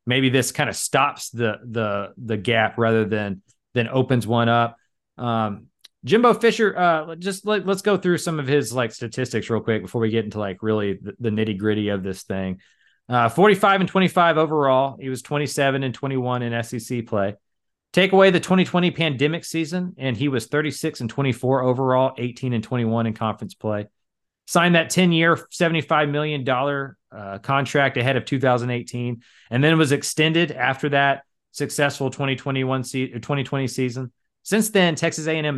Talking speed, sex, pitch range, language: 170 wpm, male, 115-150 Hz, English